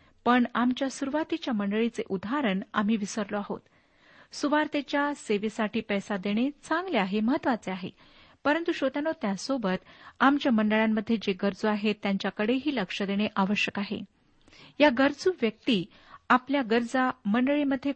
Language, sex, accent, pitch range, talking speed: Marathi, female, native, 210-275 Hz, 115 wpm